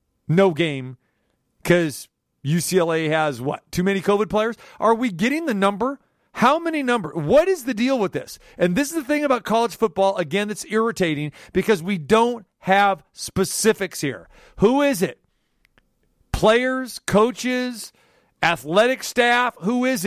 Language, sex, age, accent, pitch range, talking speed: English, male, 40-59, American, 170-240 Hz, 150 wpm